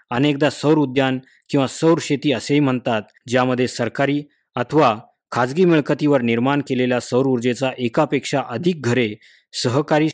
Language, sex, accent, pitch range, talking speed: Marathi, male, native, 120-140 Hz, 125 wpm